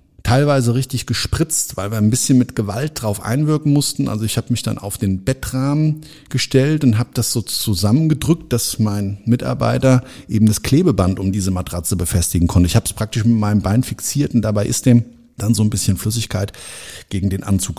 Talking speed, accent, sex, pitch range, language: 190 wpm, German, male, 100-135 Hz, German